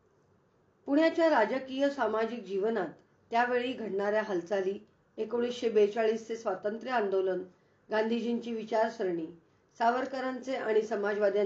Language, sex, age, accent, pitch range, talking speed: Hindi, female, 40-59, native, 200-255 Hz, 75 wpm